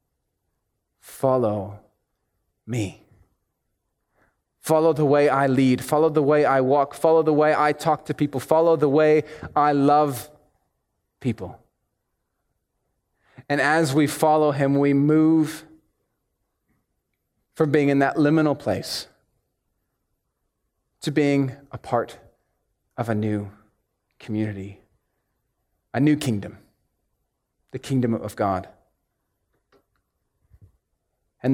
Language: English